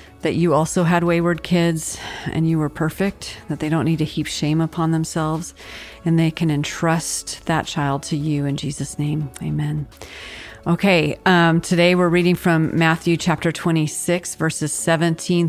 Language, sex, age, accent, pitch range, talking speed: English, female, 40-59, American, 155-175 Hz, 165 wpm